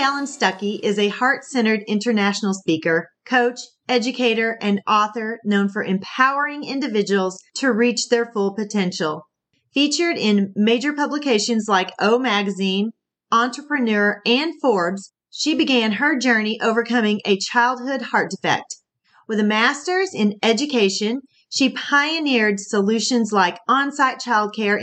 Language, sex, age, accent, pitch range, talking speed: English, female, 40-59, American, 205-260 Hz, 125 wpm